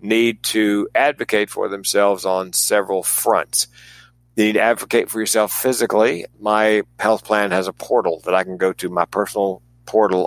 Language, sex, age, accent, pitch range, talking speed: English, male, 60-79, American, 95-110 Hz, 170 wpm